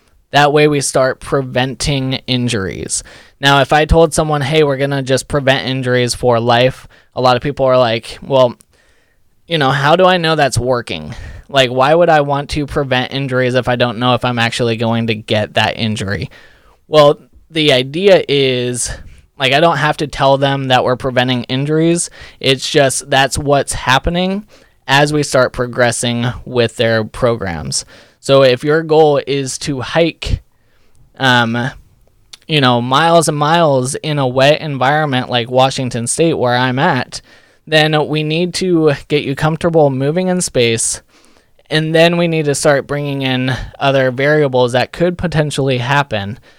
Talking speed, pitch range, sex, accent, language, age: 165 wpm, 125-150 Hz, male, American, English, 20-39